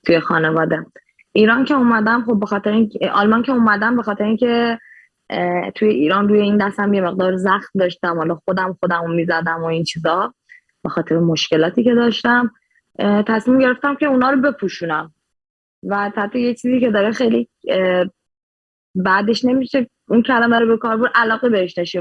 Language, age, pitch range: Persian, 20-39, 180-230 Hz